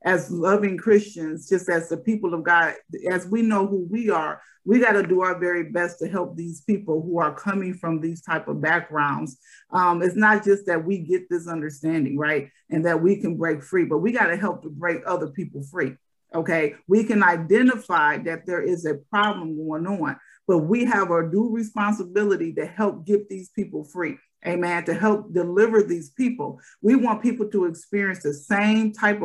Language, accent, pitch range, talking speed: English, American, 175-210 Hz, 200 wpm